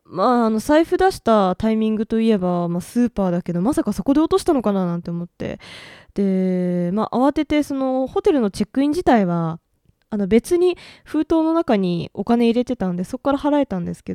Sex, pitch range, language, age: female, 180-265 Hz, Japanese, 20-39